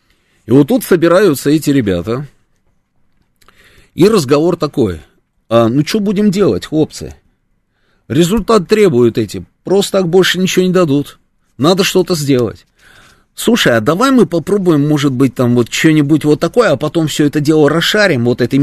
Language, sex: Russian, male